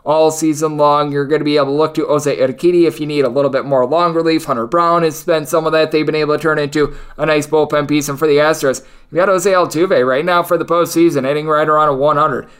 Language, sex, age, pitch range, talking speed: English, male, 20-39, 150-190 Hz, 270 wpm